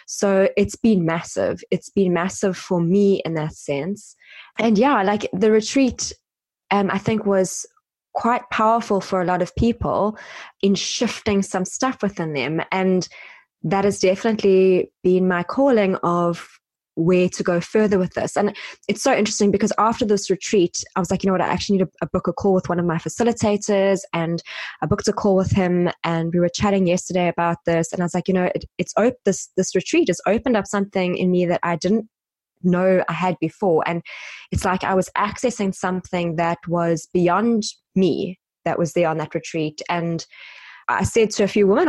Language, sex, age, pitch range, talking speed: English, female, 20-39, 175-210 Hz, 195 wpm